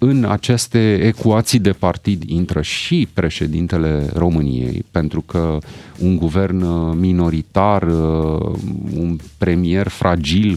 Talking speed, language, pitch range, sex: 95 wpm, Romanian, 85-120 Hz, male